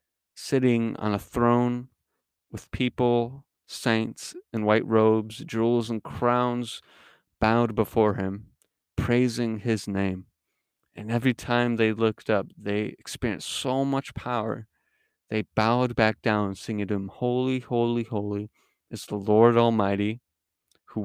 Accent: American